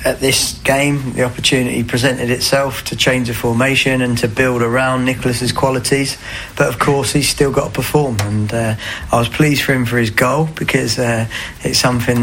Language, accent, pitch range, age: English, British, 110-125 Hz, 20-39